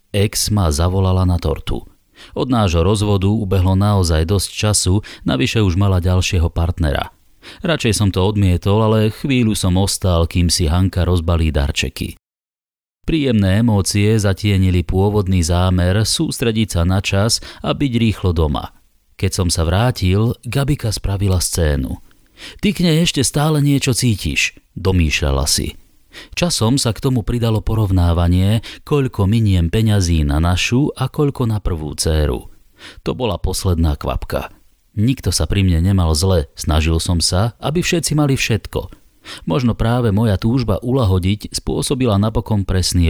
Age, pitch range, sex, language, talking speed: 30-49, 85-115 Hz, male, Slovak, 140 wpm